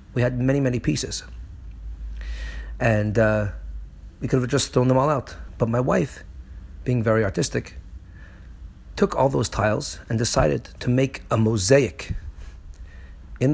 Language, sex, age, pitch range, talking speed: English, male, 40-59, 80-125 Hz, 140 wpm